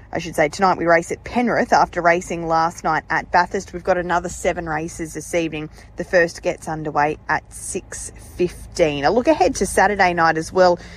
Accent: Australian